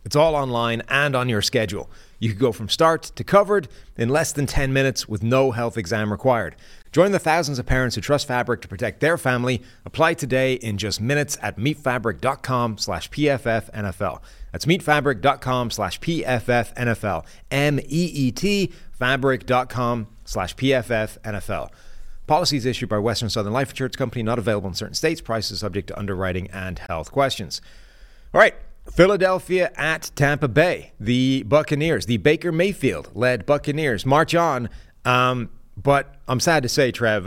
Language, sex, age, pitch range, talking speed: English, male, 30-49, 105-140 Hz, 155 wpm